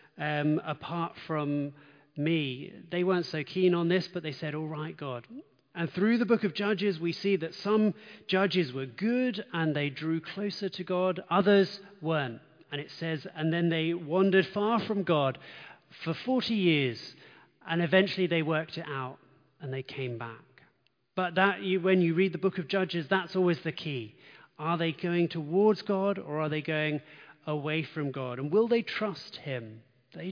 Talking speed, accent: 180 wpm, British